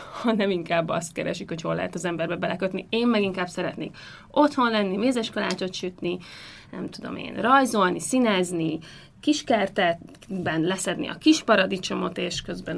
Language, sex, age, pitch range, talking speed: Hungarian, female, 30-49, 175-215 Hz, 140 wpm